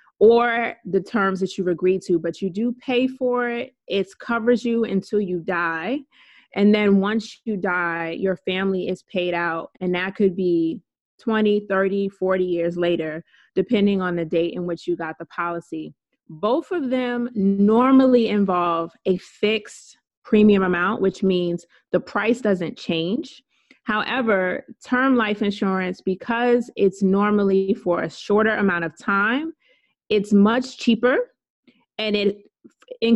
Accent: American